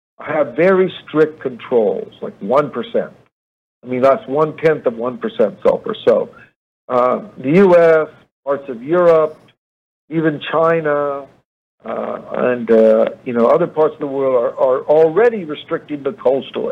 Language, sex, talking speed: English, male, 135 wpm